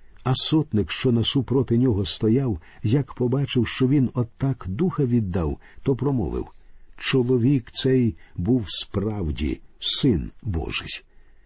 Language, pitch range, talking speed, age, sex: Ukrainian, 100-135 Hz, 115 wpm, 50-69, male